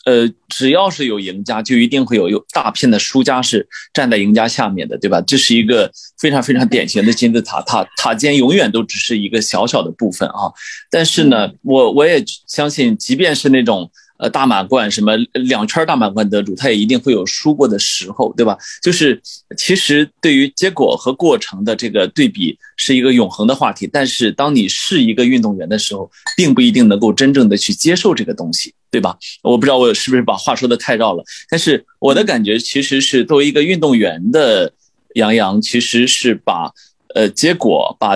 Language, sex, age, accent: Chinese, male, 20-39, native